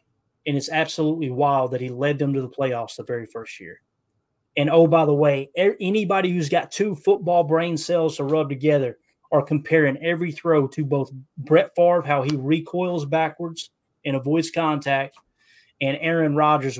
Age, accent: 20-39, American